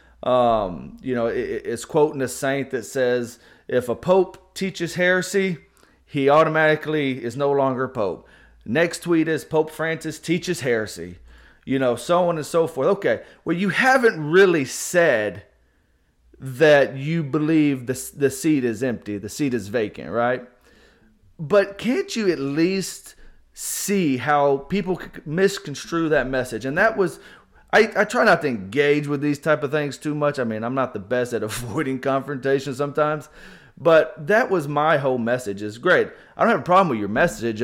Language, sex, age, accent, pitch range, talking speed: English, male, 30-49, American, 125-165 Hz, 170 wpm